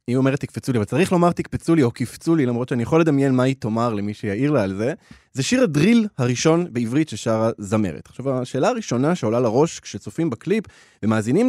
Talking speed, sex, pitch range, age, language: 205 wpm, male, 115-165 Hz, 20-39, Hebrew